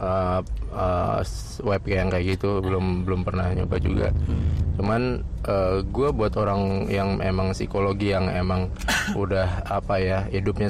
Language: Indonesian